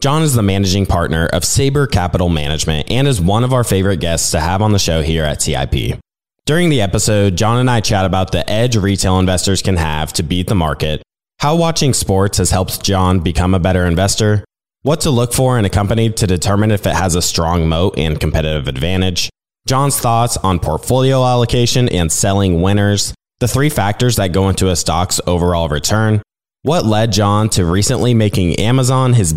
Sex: male